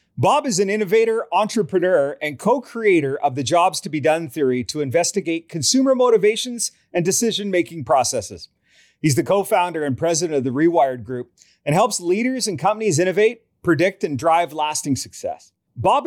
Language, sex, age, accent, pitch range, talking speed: English, male, 30-49, American, 155-215 Hz, 155 wpm